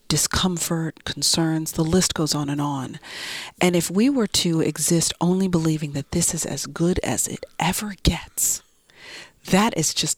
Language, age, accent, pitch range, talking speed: English, 40-59, American, 150-180 Hz, 165 wpm